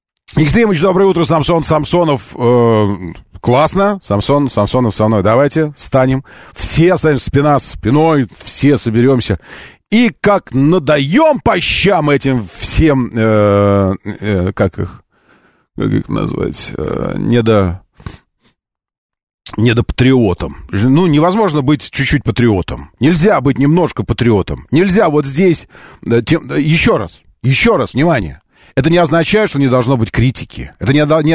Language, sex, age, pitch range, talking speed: Russian, male, 40-59, 110-155 Hz, 120 wpm